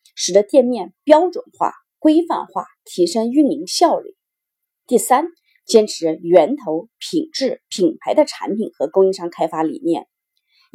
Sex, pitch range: female, 200-325 Hz